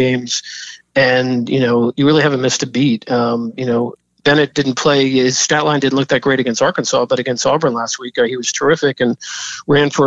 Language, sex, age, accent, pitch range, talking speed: English, male, 40-59, American, 125-145 Hz, 215 wpm